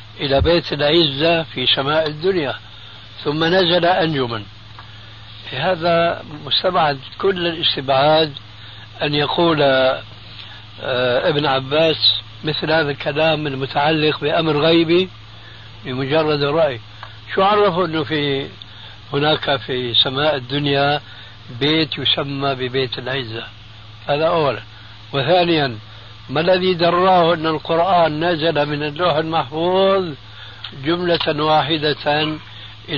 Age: 60-79